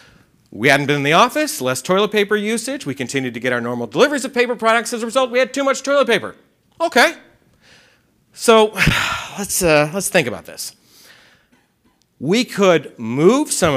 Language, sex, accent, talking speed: English, male, American, 180 wpm